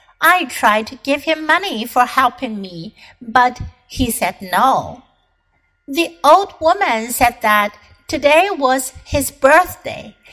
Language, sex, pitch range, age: Chinese, female, 220-325 Hz, 60-79